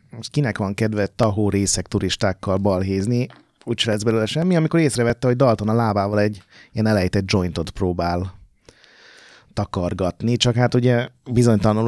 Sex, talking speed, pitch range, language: male, 140 wpm, 100-130 Hz, Hungarian